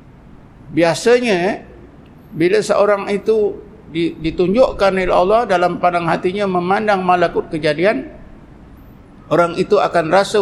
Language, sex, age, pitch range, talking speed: Malay, male, 60-79, 165-205 Hz, 100 wpm